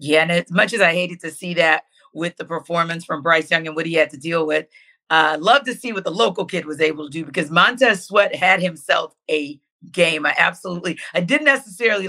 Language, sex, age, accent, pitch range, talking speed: English, female, 40-59, American, 165-190 Hz, 235 wpm